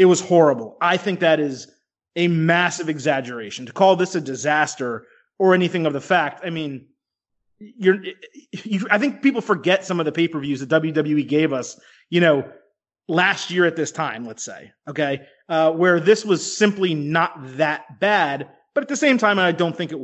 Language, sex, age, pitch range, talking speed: English, male, 30-49, 150-180 Hz, 185 wpm